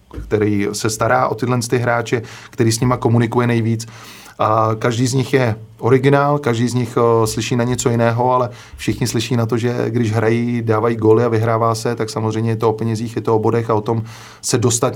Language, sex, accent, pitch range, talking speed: Czech, male, native, 100-115 Hz, 205 wpm